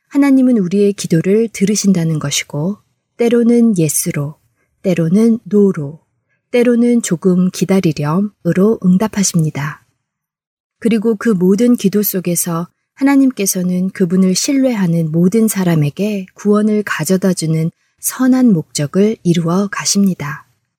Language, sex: Korean, female